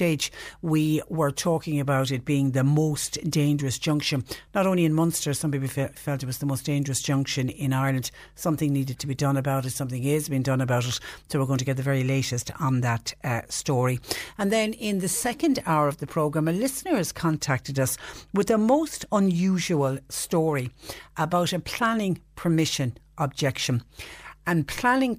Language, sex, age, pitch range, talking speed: English, female, 60-79, 135-160 Hz, 180 wpm